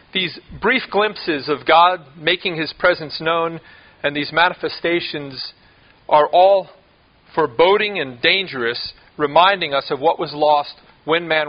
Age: 40-59